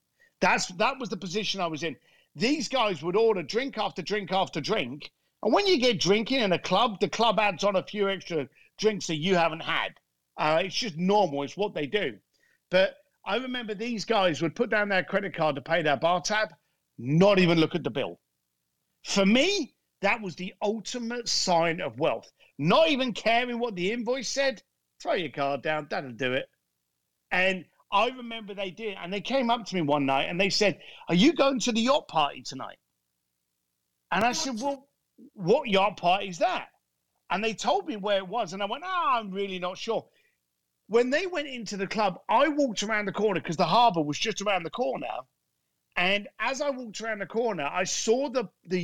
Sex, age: male, 50-69